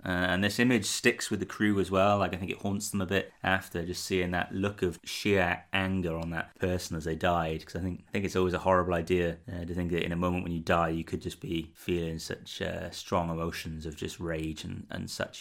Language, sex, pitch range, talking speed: English, male, 85-100 Hz, 255 wpm